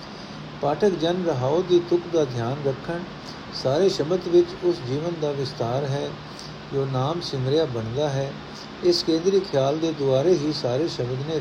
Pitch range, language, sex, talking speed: 135-175 Hz, Punjabi, male, 155 wpm